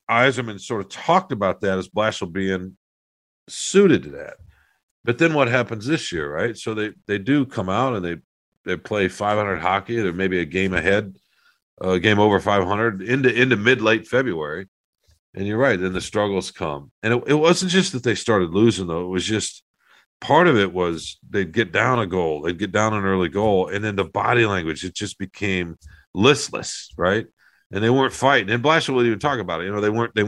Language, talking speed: English, 210 wpm